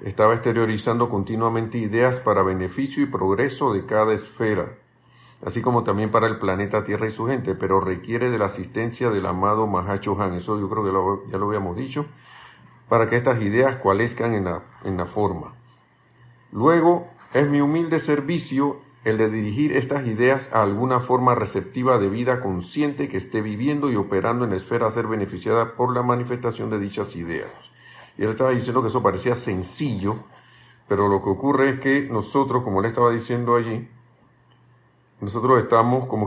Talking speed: 170 wpm